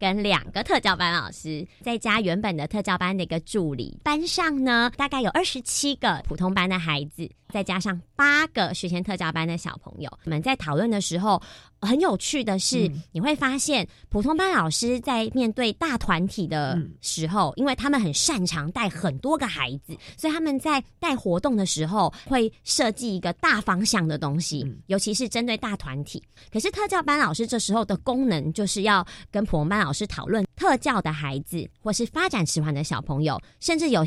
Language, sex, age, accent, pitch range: Chinese, male, 30-49, American, 170-260 Hz